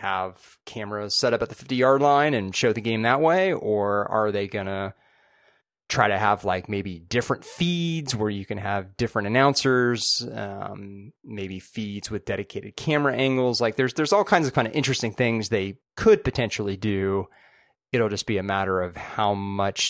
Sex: male